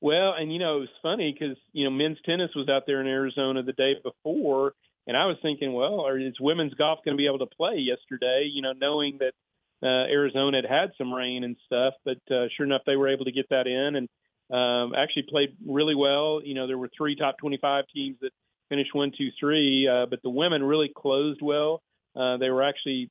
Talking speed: 230 wpm